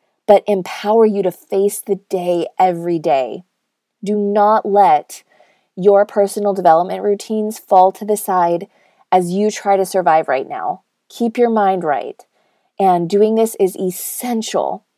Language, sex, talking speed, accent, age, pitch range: English, female, 145 wpm, American, 30-49, 185-235 Hz